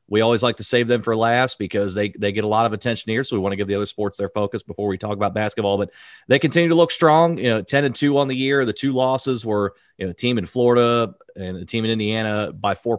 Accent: American